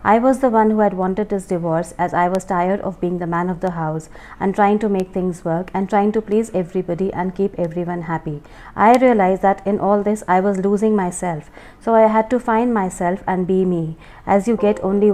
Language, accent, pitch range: English, Indian, 180-205 Hz